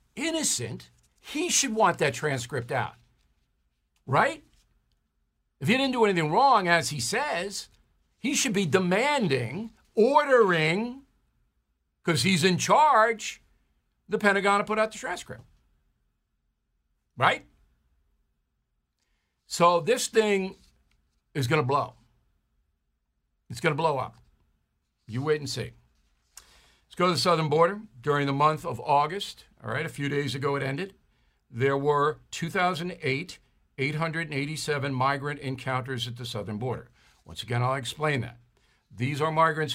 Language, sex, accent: English, male, American